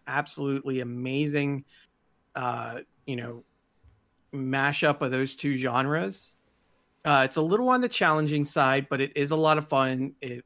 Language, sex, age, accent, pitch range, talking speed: English, male, 40-59, American, 130-150 Hz, 150 wpm